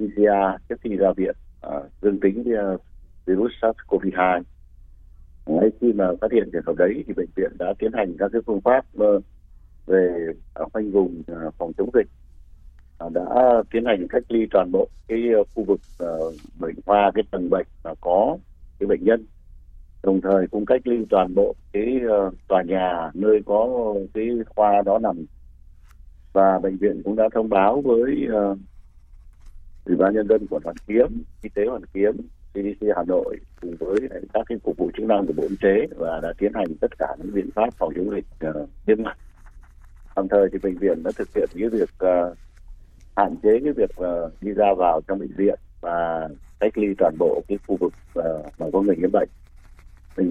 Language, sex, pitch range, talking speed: Vietnamese, male, 80-105 Hz, 180 wpm